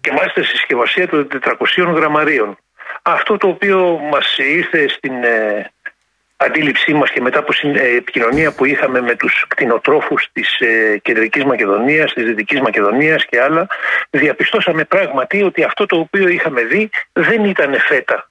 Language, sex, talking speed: Greek, male, 155 wpm